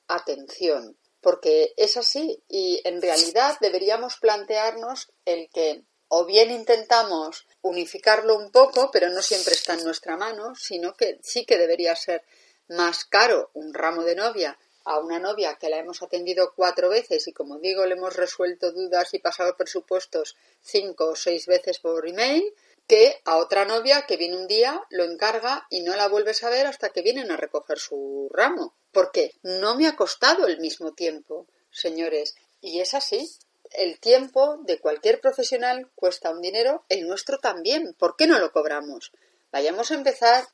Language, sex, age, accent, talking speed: Spanish, female, 30-49, Spanish, 170 wpm